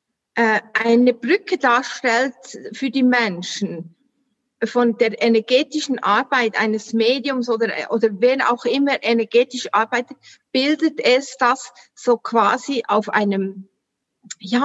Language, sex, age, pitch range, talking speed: German, female, 50-69, 215-260 Hz, 110 wpm